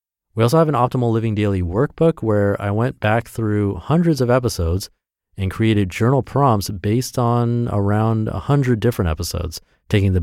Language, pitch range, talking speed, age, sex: English, 95-120 Hz, 165 wpm, 30-49, male